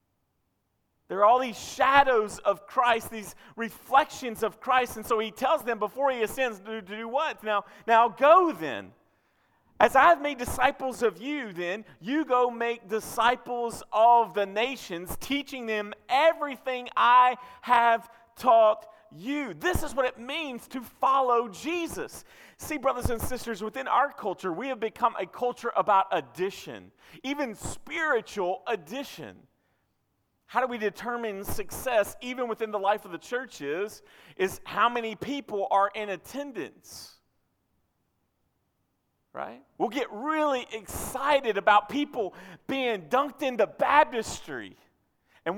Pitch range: 215-275 Hz